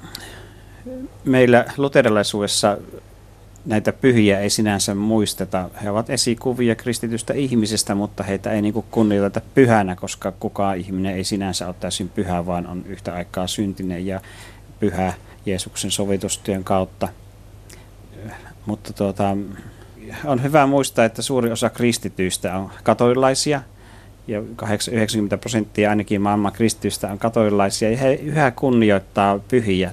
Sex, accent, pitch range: male, native, 100-120 Hz